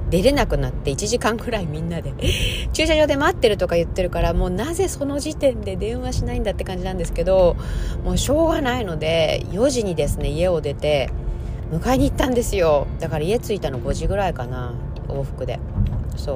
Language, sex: Japanese, female